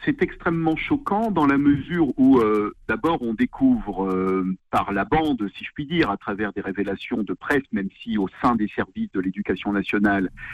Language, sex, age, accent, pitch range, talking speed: French, male, 50-69, French, 105-175 Hz, 195 wpm